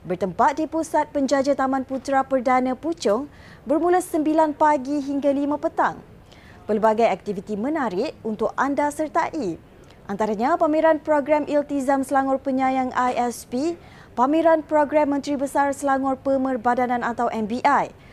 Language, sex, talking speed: Malay, female, 115 wpm